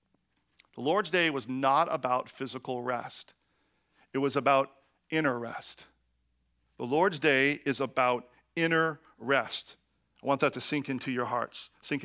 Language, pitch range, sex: English, 135-200 Hz, male